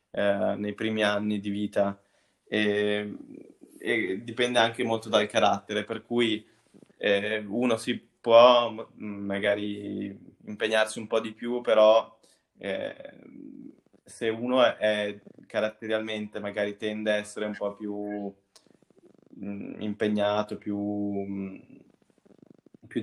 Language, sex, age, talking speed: Italian, male, 20-39, 105 wpm